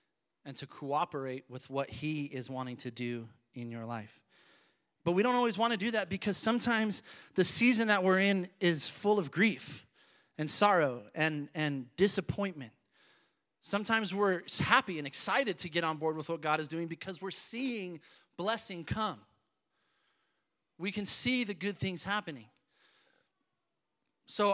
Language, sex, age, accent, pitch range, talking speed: English, male, 30-49, American, 135-190 Hz, 155 wpm